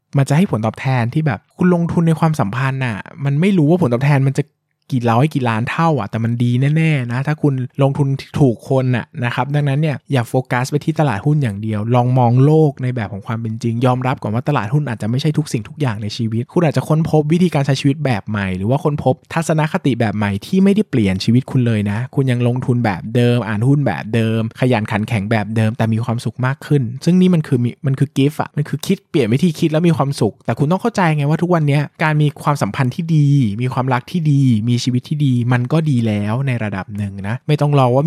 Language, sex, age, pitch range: Thai, male, 20-39, 115-150 Hz